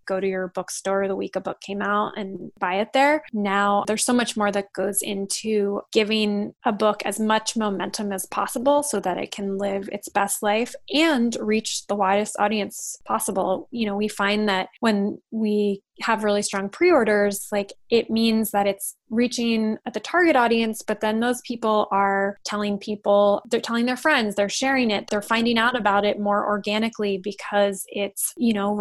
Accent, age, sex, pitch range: American, 20-39, female, 200-225 Hz